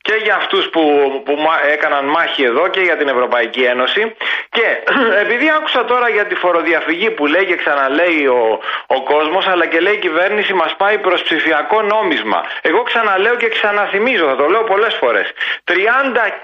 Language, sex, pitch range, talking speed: Greek, male, 170-255 Hz, 170 wpm